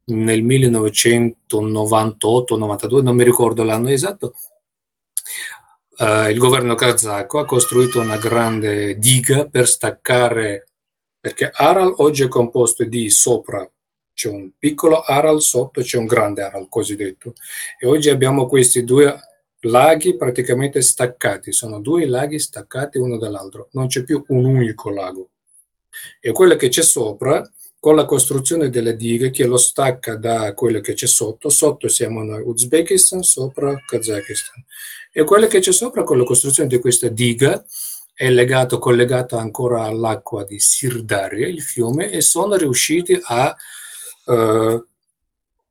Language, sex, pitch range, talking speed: Italian, male, 110-135 Hz, 135 wpm